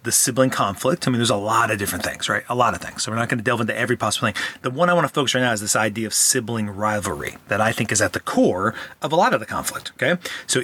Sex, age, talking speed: male, 30-49, 310 wpm